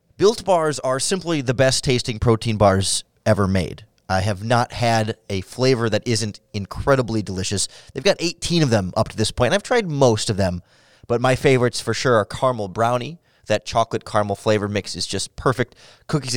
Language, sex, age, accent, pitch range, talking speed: English, male, 30-49, American, 110-140 Hz, 185 wpm